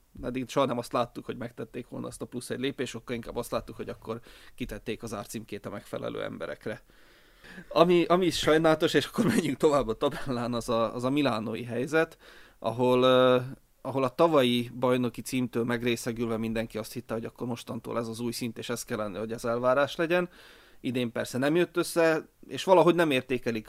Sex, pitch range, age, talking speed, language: male, 115-130 Hz, 30-49, 185 wpm, Hungarian